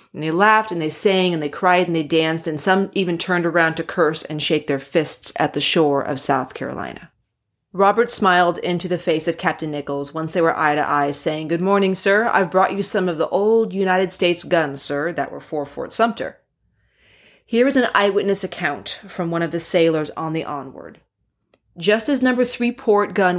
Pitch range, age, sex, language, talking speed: 155-190 Hz, 30-49, female, English, 210 wpm